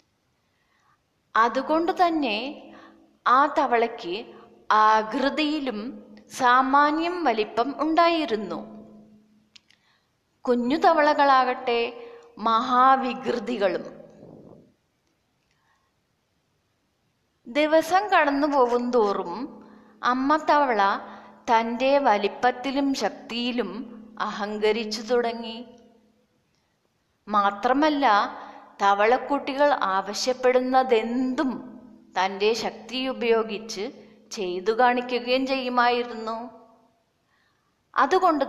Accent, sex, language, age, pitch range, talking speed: native, female, Malayalam, 20-39, 215-265 Hz, 50 wpm